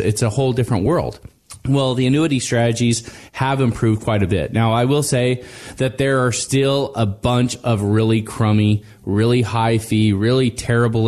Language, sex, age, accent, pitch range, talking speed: English, male, 20-39, American, 110-135 Hz, 175 wpm